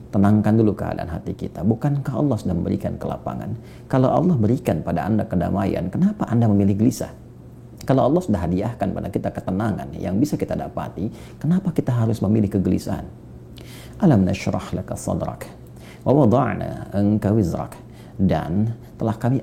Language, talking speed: Indonesian, 140 wpm